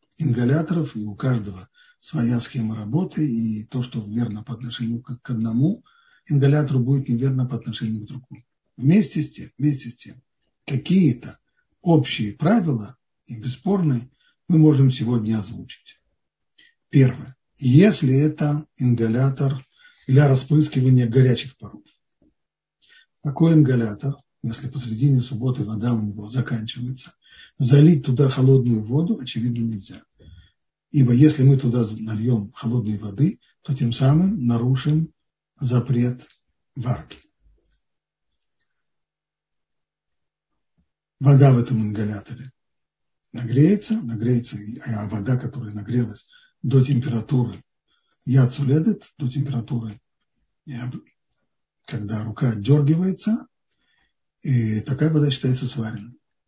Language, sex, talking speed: Russian, male, 105 wpm